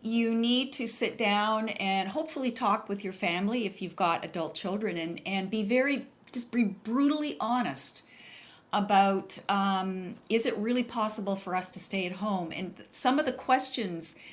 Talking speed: 170 wpm